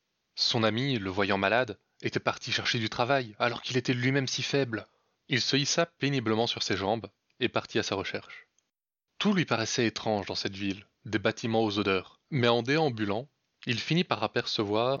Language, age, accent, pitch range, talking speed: French, 20-39, French, 105-135 Hz, 185 wpm